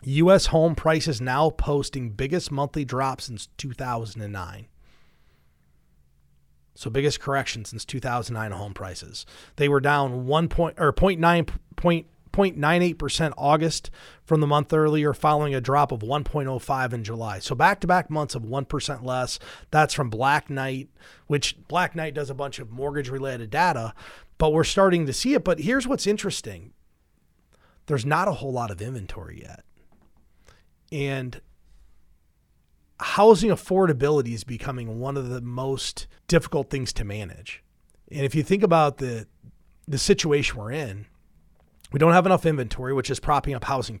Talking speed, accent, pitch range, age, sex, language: 150 wpm, American, 110-150 Hz, 30-49, male, English